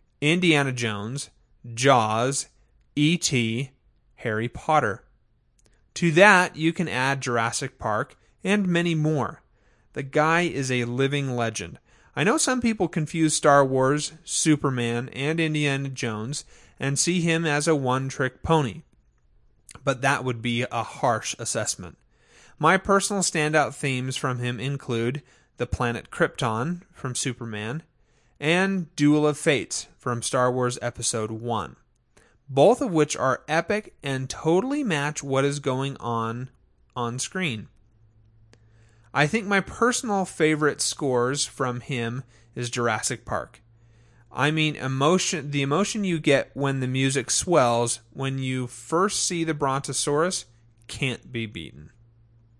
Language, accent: English, American